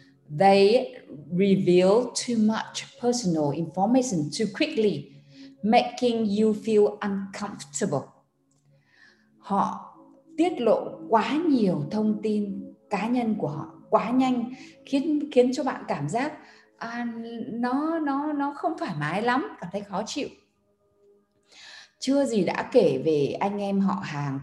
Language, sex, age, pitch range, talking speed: Vietnamese, female, 20-39, 165-230 Hz, 130 wpm